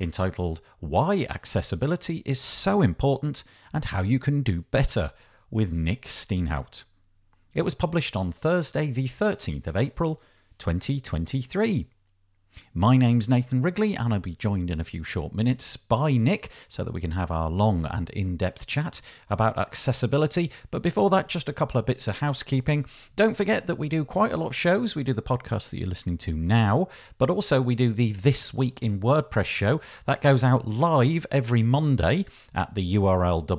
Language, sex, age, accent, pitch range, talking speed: English, male, 40-59, British, 95-140 Hz, 180 wpm